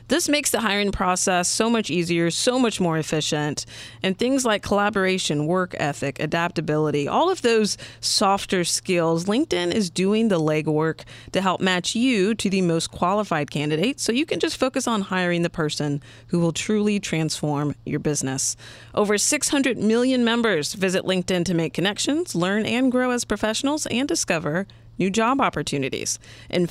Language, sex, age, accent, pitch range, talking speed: English, female, 30-49, American, 155-220 Hz, 165 wpm